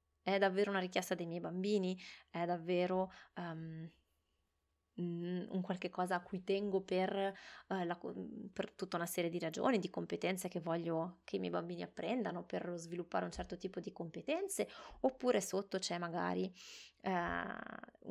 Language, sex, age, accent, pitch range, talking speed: Italian, female, 20-39, native, 170-190 Hz, 150 wpm